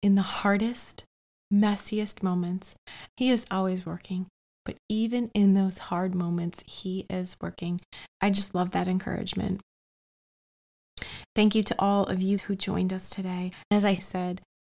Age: 20-39